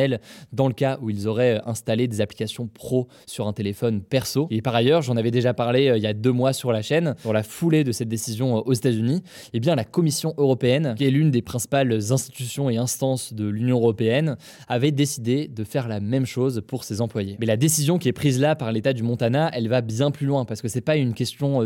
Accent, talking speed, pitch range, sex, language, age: French, 240 wpm, 115-145 Hz, male, French, 20-39